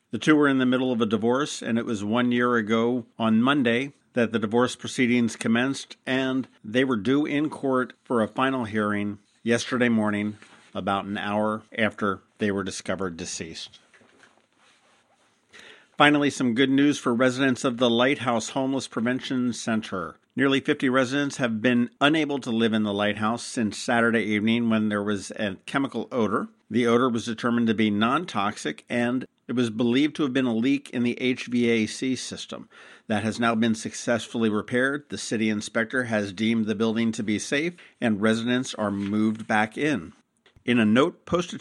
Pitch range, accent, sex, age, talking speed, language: 110-130 Hz, American, male, 50-69, 175 wpm, English